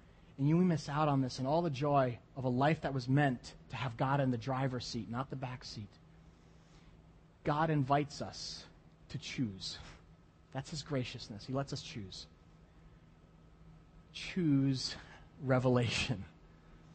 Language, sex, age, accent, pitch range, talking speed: English, male, 30-49, American, 125-155 Hz, 145 wpm